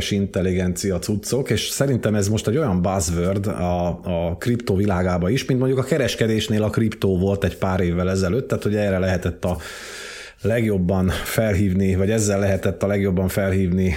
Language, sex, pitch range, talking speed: Hungarian, male, 95-115 Hz, 165 wpm